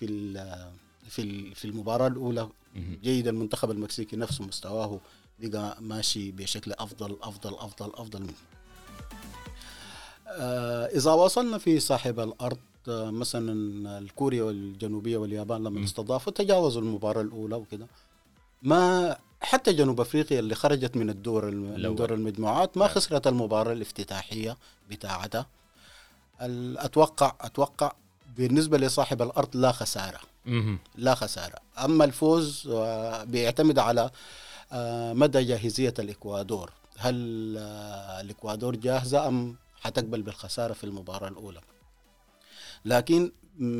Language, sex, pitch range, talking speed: Arabic, male, 105-130 Hz, 100 wpm